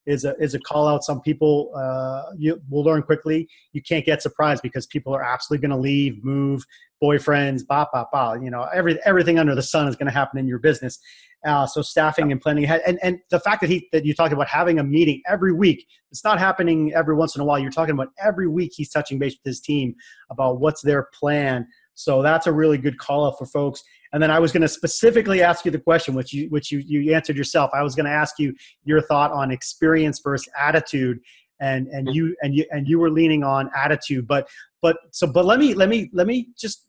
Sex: male